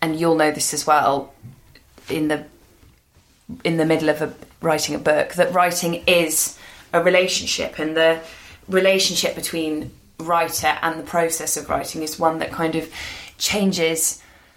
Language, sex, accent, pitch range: English, female, British, 150-170 Hz